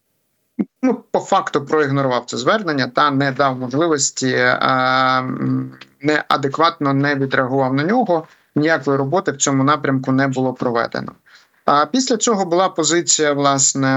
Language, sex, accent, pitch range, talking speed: Ukrainian, male, native, 130-150 Hz, 125 wpm